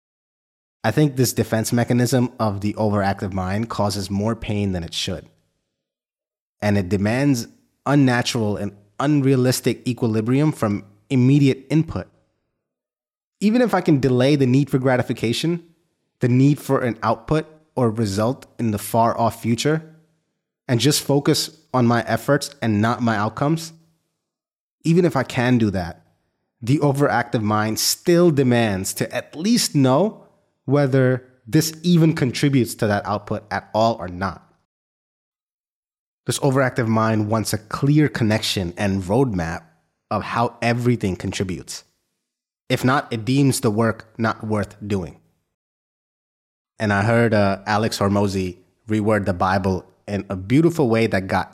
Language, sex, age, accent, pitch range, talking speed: English, male, 20-39, American, 100-135 Hz, 135 wpm